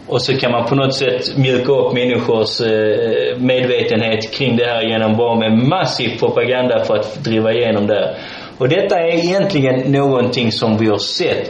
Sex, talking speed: male, 185 wpm